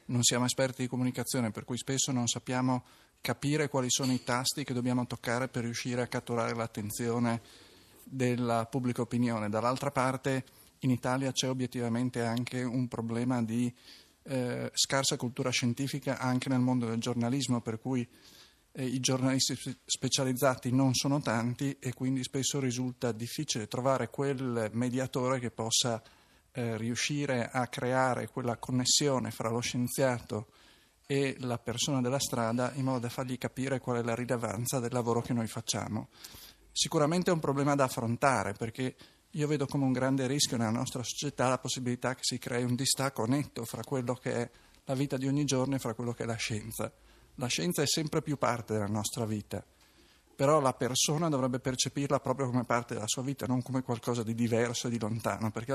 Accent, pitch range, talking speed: native, 120-135 Hz, 170 wpm